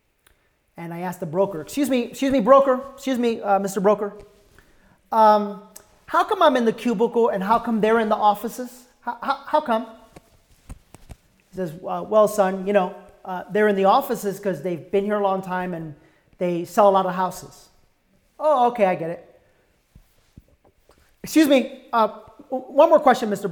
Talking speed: 180 wpm